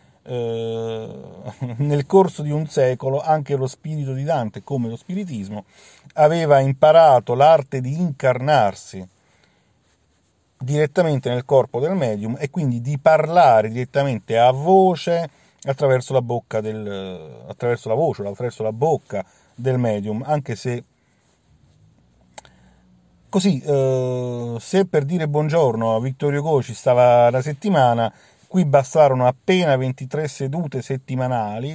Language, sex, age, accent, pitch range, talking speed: Italian, male, 50-69, native, 115-150 Hz, 120 wpm